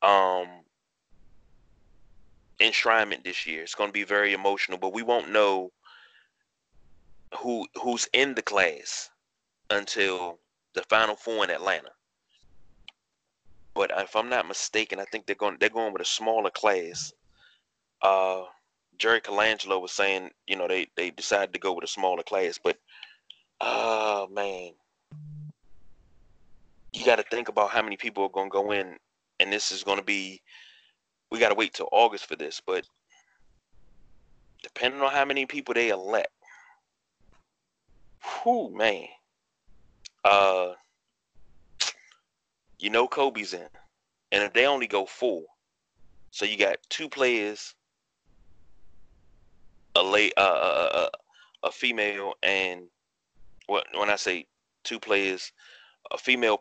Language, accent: English, American